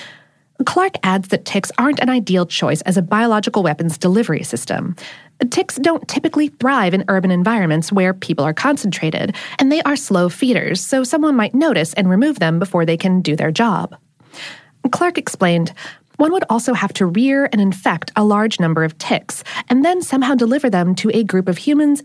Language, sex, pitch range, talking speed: English, female, 185-265 Hz, 185 wpm